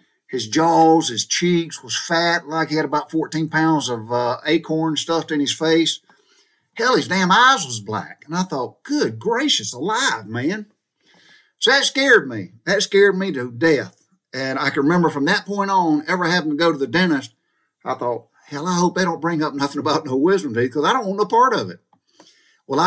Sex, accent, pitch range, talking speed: male, American, 130-180 Hz, 205 wpm